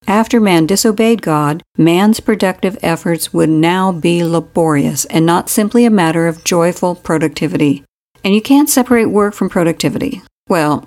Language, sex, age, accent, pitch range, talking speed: English, female, 60-79, American, 155-215 Hz, 150 wpm